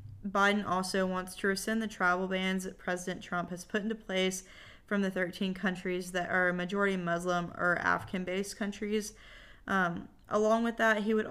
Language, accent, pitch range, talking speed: English, American, 175-195 Hz, 170 wpm